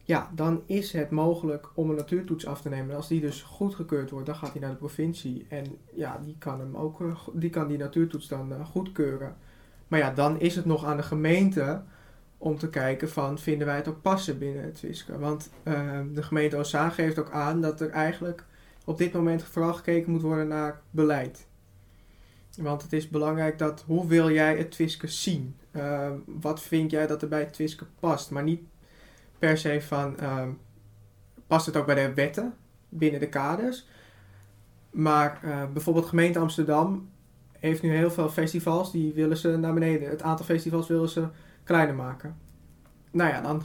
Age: 20-39